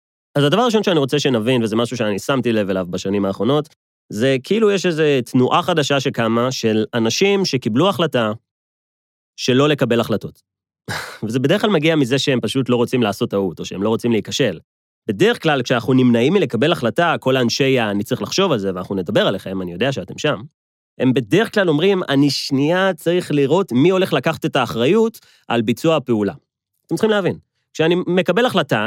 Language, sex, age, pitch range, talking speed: Hebrew, male, 30-49, 115-170 Hz, 175 wpm